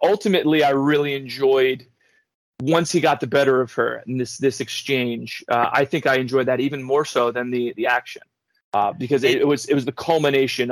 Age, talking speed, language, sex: 30-49, 205 wpm, English, male